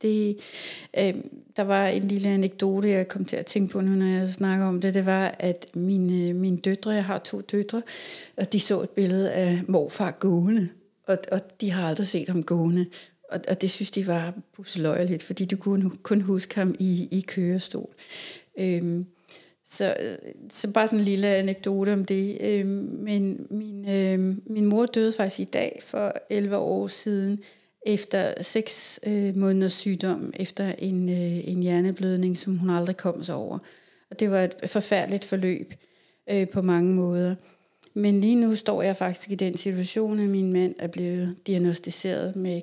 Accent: native